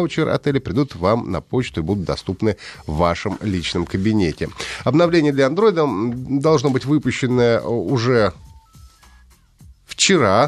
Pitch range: 100-135 Hz